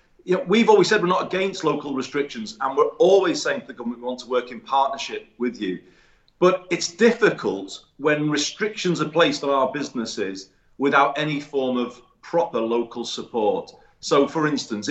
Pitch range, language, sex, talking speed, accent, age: 120-175 Hz, English, male, 175 wpm, British, 40-59